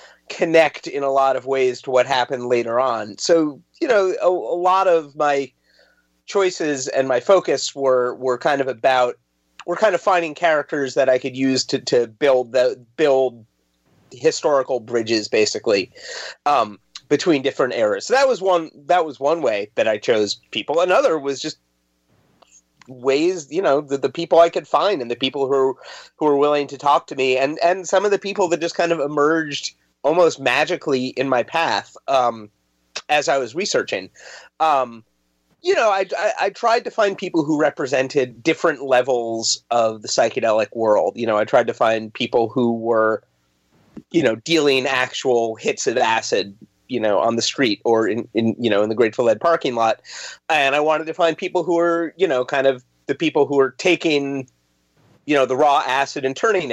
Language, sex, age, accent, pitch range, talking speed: English, male, 30-49, American, 120-170 Hz, 190 wpm